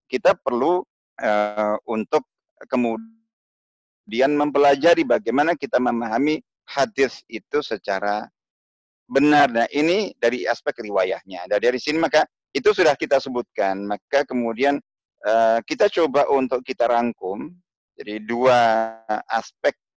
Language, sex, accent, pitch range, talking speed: Indonesian, male, native, 110-140 Hz, 110 wpm